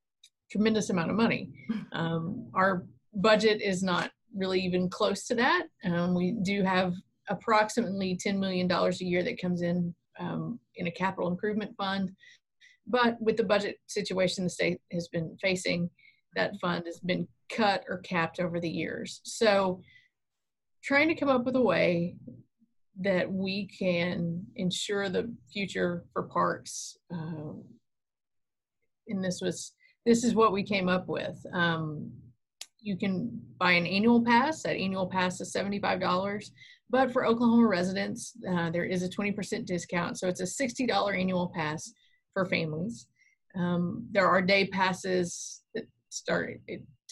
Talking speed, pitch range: 150 wpm, 175-215 Hz